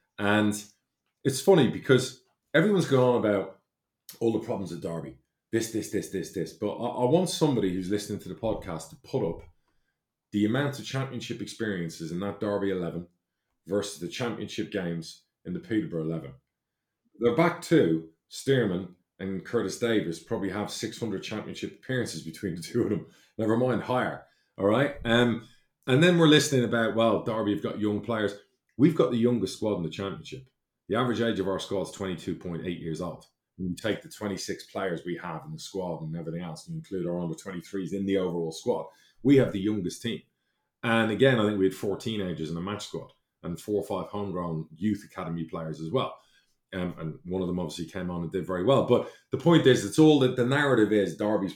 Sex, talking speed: male, 200 wpm